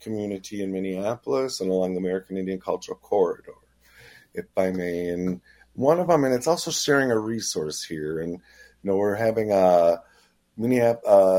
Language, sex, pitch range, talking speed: English, male, 90-120 Hz, 165 wpm